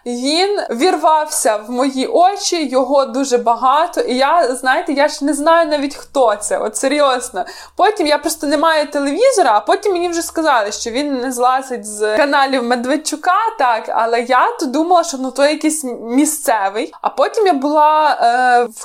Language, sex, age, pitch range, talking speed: Ukrainian, female, 20-39, 240-295 Hz, 170 wpm